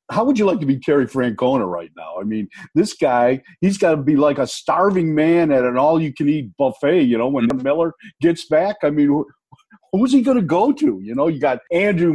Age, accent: 50-69, American